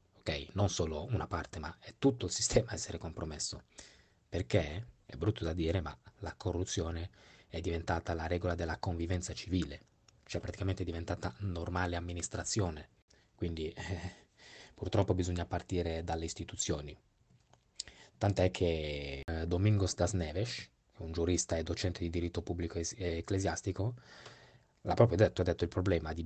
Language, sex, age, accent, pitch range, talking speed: Italian, male, 20-39, native, 85-95 Hz, 145 wpm